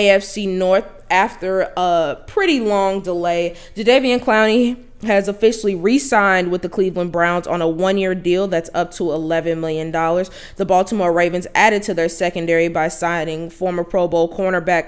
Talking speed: 155 wpm